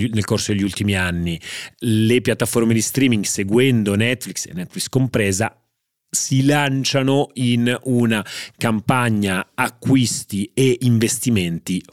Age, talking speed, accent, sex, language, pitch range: 30-49, 110 wpm, native, male, Italian, 90-120 Hz